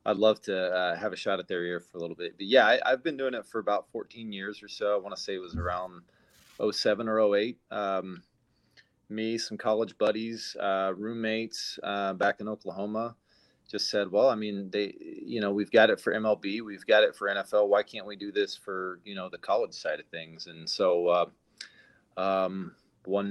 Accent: American